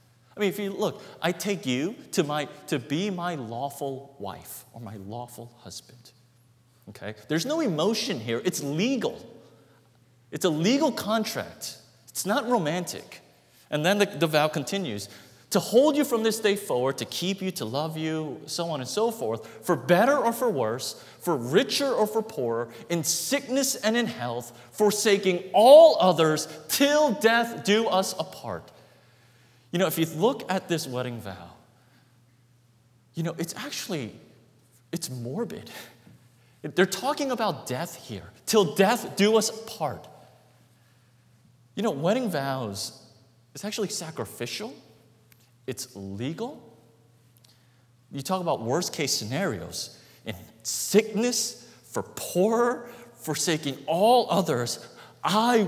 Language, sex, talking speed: English, male, 135 wpm